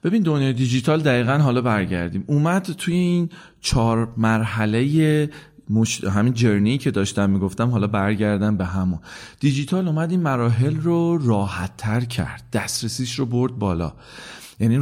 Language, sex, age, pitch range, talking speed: Persian, male, 30-49, 100-125 Hz, 135 wpm